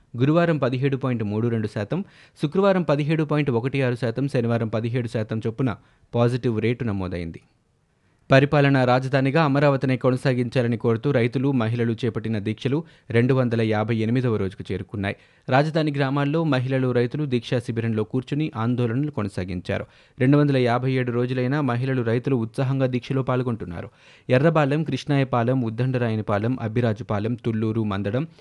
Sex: male